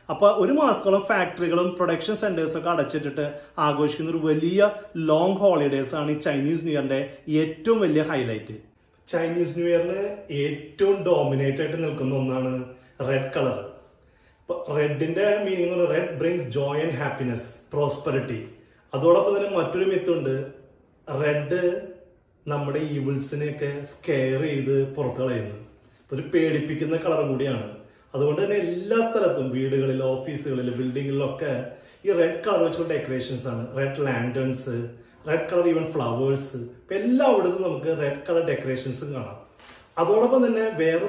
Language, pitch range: Malayalam, 135-175 Hz